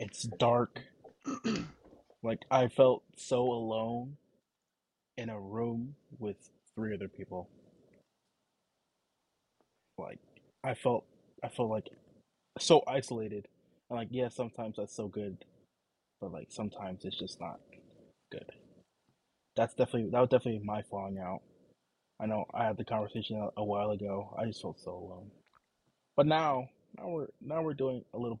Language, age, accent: English, 20-39, American